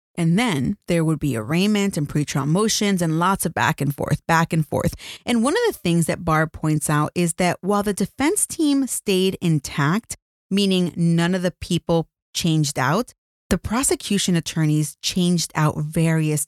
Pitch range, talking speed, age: 150-200 Hz, 175 wpm, 30-49